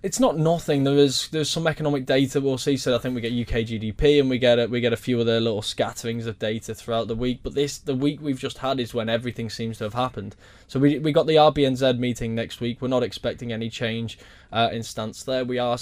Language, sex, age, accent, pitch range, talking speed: English, male, 10-29, British, 110-125 Hz, 260 wpm